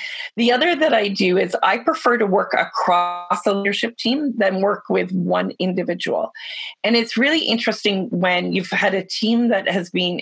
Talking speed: 180 wpm